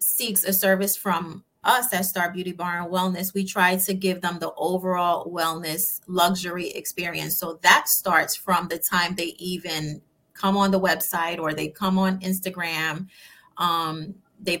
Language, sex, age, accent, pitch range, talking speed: English, female, 30-49, American, 175-195 Hz, 165 wpm